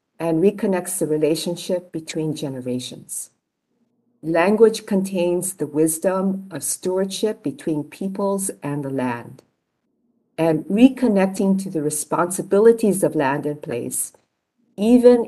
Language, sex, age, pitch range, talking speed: English, female, 50-69, 155-215 Hz, 105 wpm